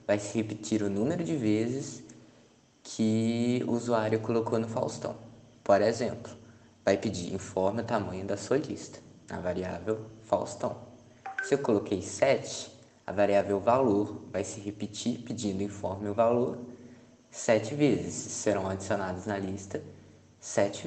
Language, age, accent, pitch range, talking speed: Portuguese, 20-39, Brazilian, 100-120 Hz, 135 wpm